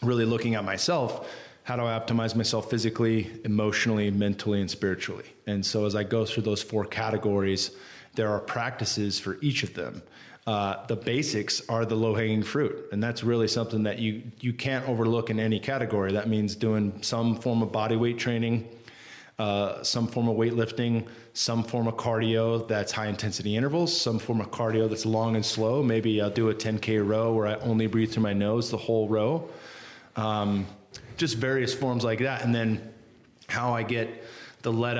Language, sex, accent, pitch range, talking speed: English, male, American, 105-115 Hz, 185 wpm